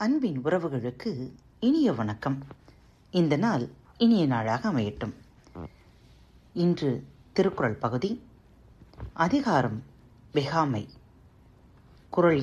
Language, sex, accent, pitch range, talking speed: Tamil, female, native, 130-220 Hz, 70 wpm